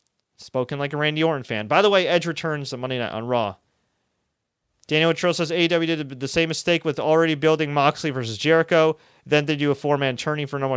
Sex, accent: male, American